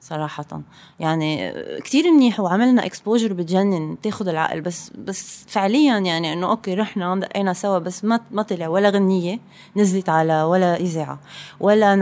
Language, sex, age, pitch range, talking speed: English, female, 20-39, 170-215 Hz, 145 wpm